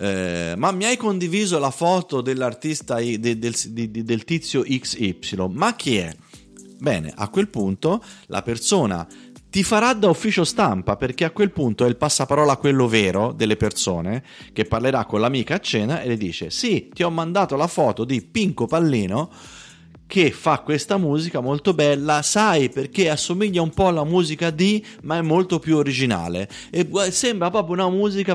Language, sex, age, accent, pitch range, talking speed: Italian, male, 30-49, native, 110-175 Hz, 170 wpm